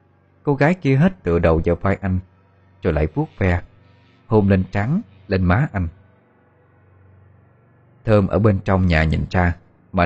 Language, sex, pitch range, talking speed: Vietnamese, male, 80-100 Hz, 160 wpm